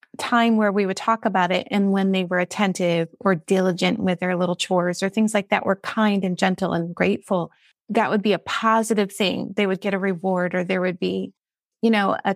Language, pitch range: English, 190-230 Hz